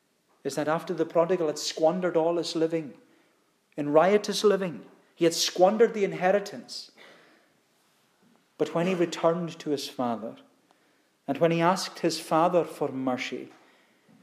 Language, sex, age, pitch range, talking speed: English, male, 40-59, 155-205 Hz, 140 wpm